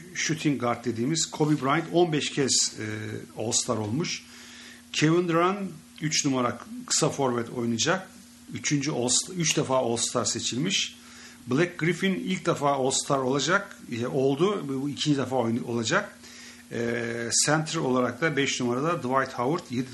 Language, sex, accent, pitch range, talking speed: English, male, Turkish, 120-160 Hz, 130 wpm